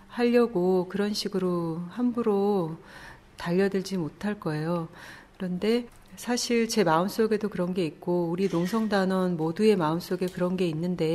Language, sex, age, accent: Korean, female, 40-59, native